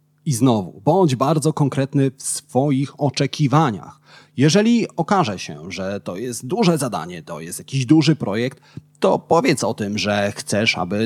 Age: 30-49